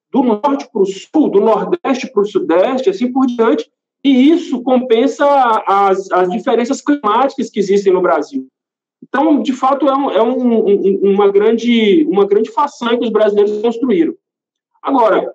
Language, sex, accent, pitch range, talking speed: Portuguese, male, Brazilian, 230-315 Hz, 150 wpm